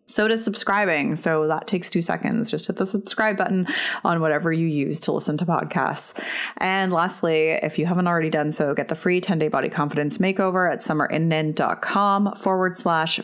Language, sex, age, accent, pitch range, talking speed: English, female, 30-49, American, 150-185 Hz, 185 wpm